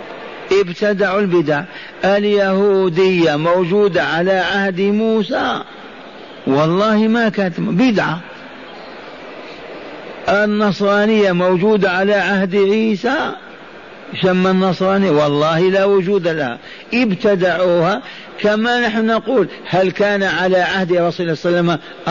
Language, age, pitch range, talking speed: Arabic, 50-69, 170-205 Hz, 95 wpm